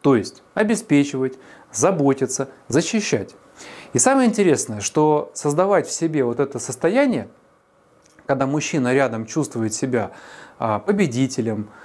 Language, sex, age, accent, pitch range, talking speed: Russian, male, 30-49, native, 125-190 Hz, 105 wpm